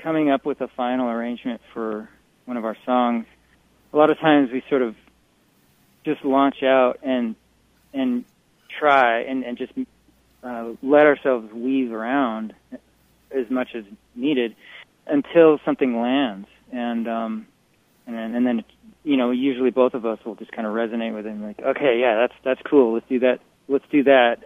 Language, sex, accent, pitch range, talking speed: English, male, American, 120-145 Hz, 170 wpm